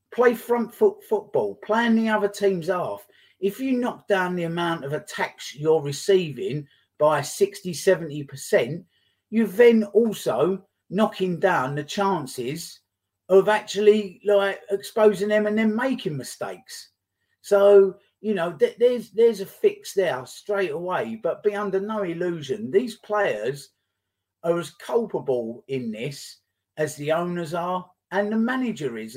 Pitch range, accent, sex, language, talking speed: 160-220 Hz, British, male, English, 140 wpm